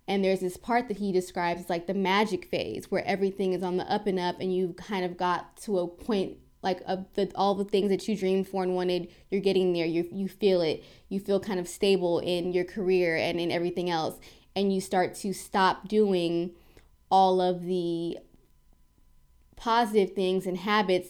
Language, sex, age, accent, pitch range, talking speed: English, female, 20-39, American, 175-195 Hz, 205 wpm